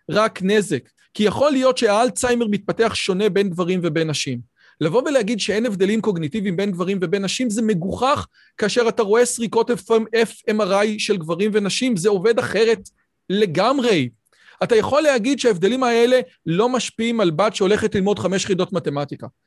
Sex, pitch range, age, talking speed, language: male, 195-255 Hz, 40-59, 150 wpm, Hebrew